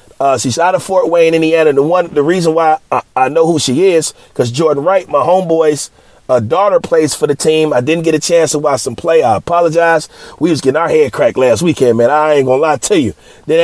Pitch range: 160-210 Hz